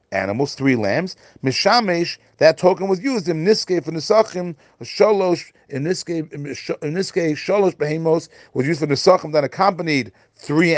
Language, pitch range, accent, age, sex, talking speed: English, 130-170 Hz, American, 40-59, male, 140 wpm